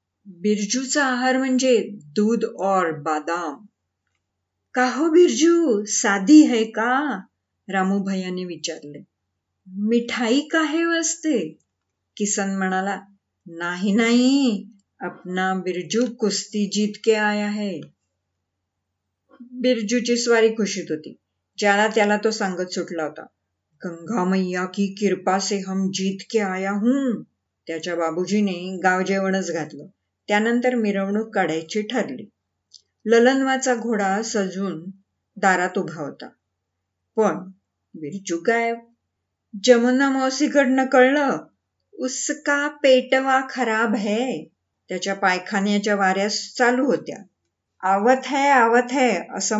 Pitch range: 180-235 Hz